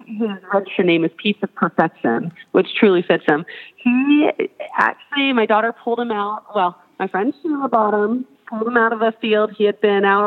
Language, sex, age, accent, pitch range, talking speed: English, female, 30-49, American, 190-225 Hz, 200 wpm